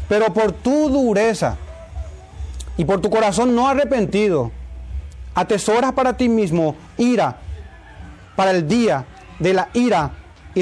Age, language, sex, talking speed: 30-49, Spanish, male, 125 wpm